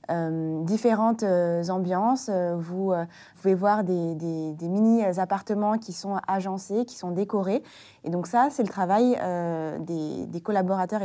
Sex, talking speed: female, 170 wpm